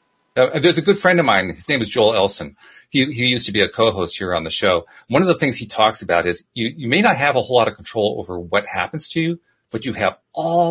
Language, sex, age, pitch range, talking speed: English, male, 40-59, 115-175 Hz, 280 wpm